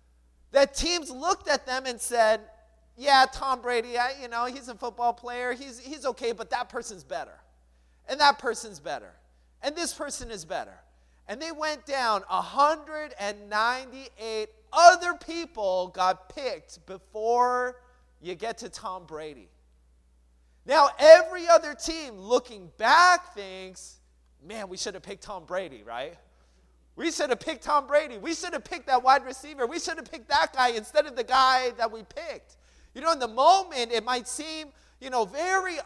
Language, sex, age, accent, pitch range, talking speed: English, male, 30-49, American, 185-295 Hz, 165 wpm